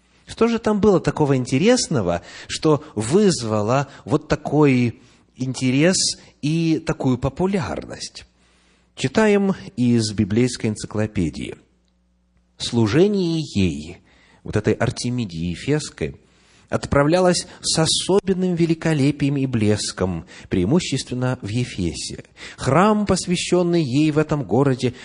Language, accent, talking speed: Russian, native, 95 wpm